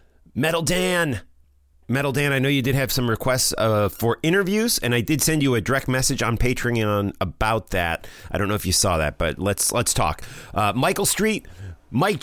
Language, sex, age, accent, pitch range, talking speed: English, male, 40-59, American, 105-165 Hz, 200 wpm